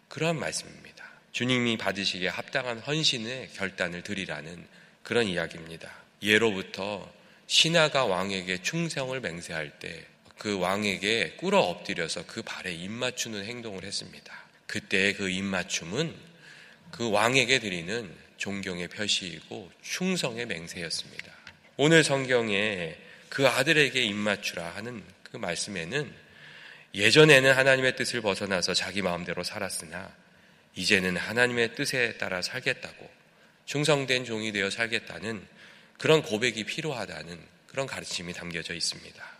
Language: Korean